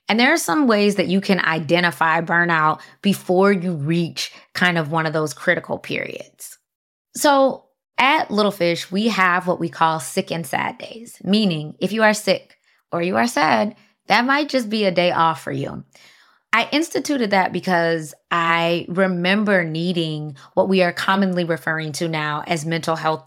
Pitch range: 165-200 Hz